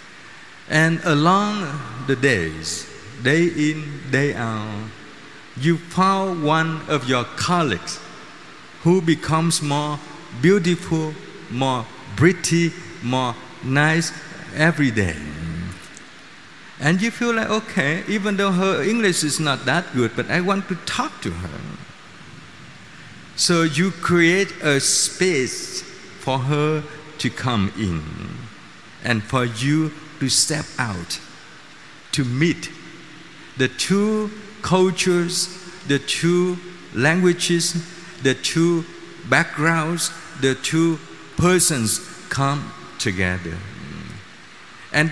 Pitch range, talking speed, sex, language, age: 130-175 Hz, 100 wpm, male, Vietnamese, 50-69